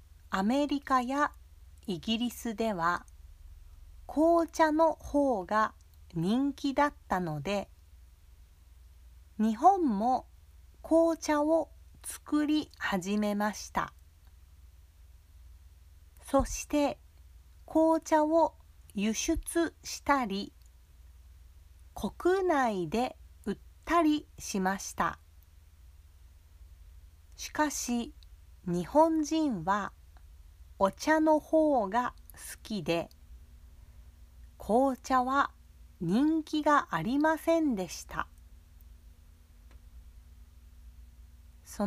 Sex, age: female, 40-59